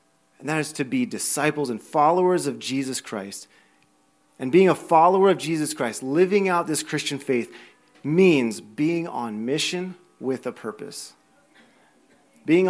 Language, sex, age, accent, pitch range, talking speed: English, male, 30-49, American, 120-160 Hz, 145 wpm